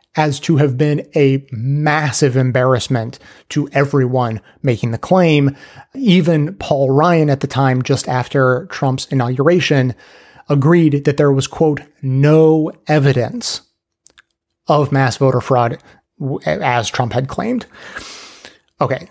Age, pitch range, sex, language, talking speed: 30-49, 130-155 Hz, male, English, 120 wpm